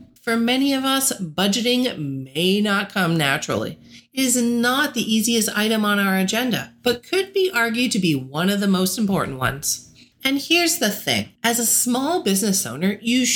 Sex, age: female, 40-59